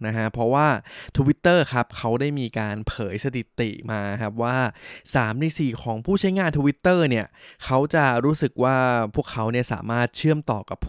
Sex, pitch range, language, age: male, 115-145 Hz, Thai, 20-39